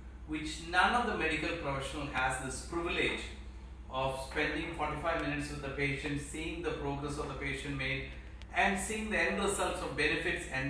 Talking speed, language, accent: 175 wpm, Malayalam, native